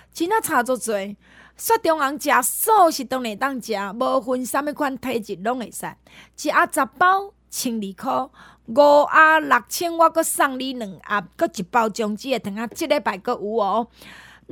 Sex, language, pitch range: female, Chinese, 230-320 Hz